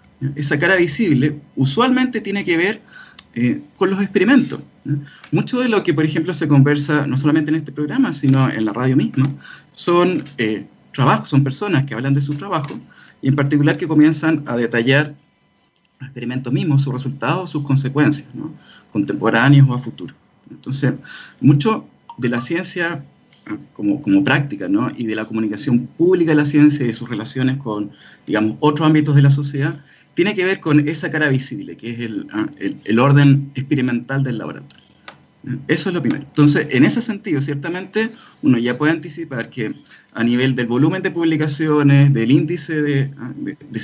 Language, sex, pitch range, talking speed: Spanish, male, 130-155 Hz, 170 wpm